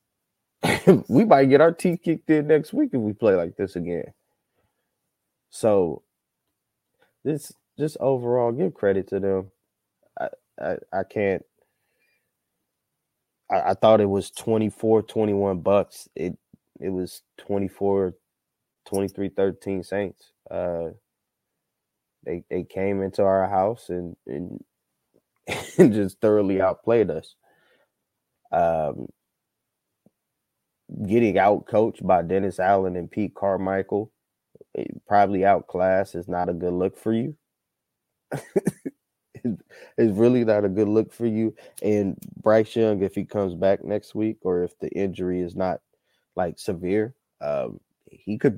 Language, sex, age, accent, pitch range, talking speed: English, male, 20-39, American, 95-110 Hz, 135 wpm